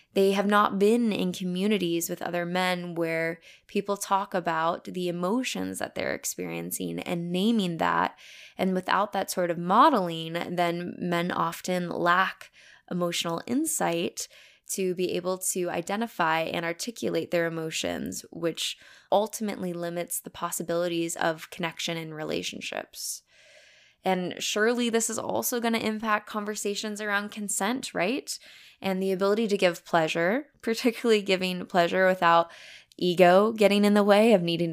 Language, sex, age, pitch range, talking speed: English, female, 10-29, 170-200 Hz, 140 wpm